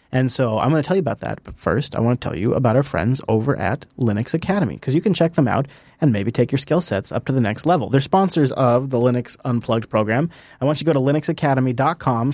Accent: American